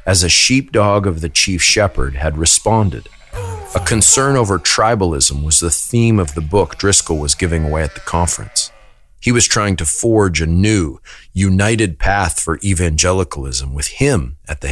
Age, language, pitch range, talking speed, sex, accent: 40-59, English, 80-110 Hz, 165 wpm, male, American